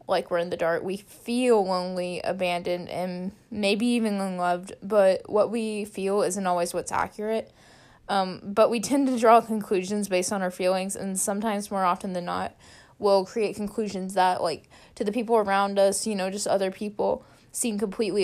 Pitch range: 190-215 Hz